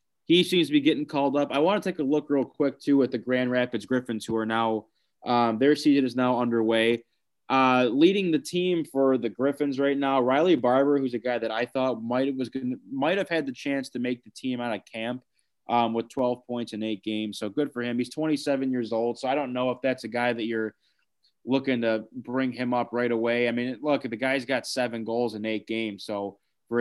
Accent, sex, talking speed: American, male, 230 wpm